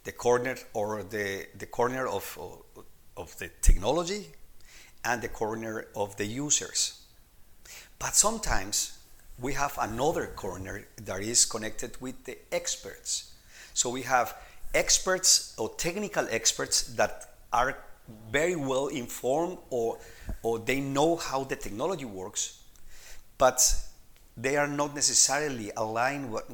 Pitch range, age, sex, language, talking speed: 115-165 Hz, 50-69, male, English, 120 wpm